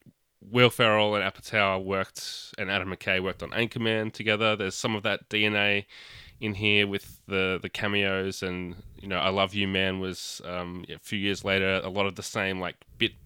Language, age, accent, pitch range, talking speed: English, 20-39, Australian, 95-110 Hz, 195 wpm